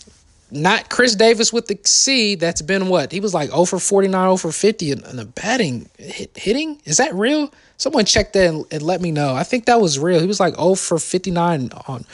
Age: 20-39